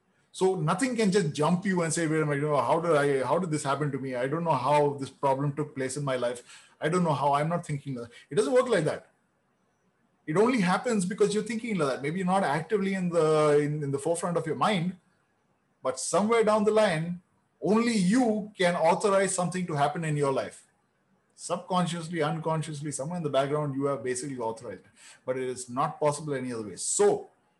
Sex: male